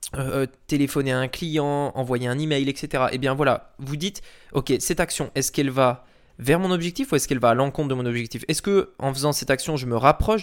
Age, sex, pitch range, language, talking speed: 20-39, male, 130-160 Hz, French, 240 wpm